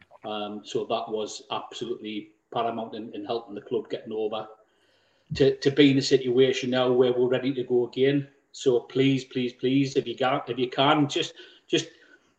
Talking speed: 185 wpm